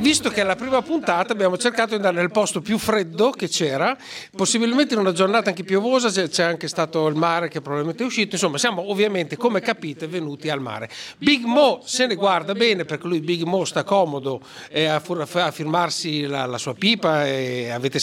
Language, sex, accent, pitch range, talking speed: Italian, male, native, 160-235 Hz, 190 wpm